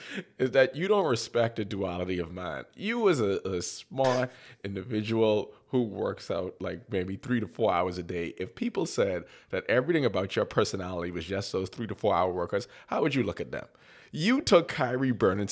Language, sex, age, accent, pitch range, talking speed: English, male, 30-49, American, 95-120 Hz, 200 wpm